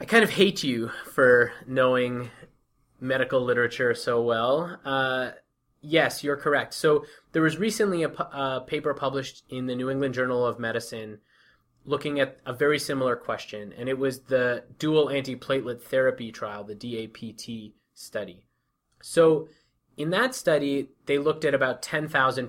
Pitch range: 120-150 Hz